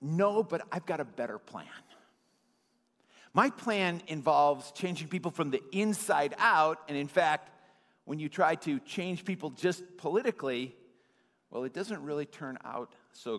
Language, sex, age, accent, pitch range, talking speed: English, male, 50-69, American, 145-200 Hz, 150 wpm